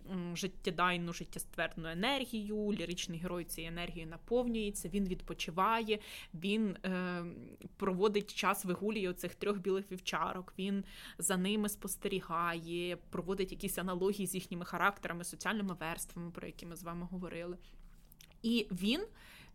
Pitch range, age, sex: 175-210 Hz, 20-39, female